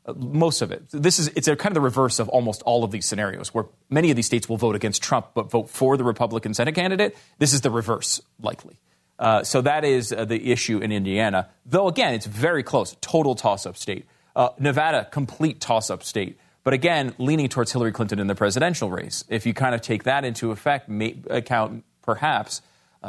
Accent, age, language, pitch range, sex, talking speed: American, 30-49, English, 105-135 Hz, male, 205 wpm